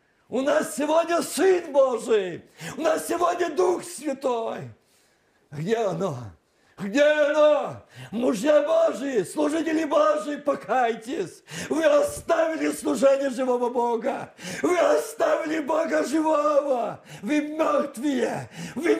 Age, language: 50-69, Russian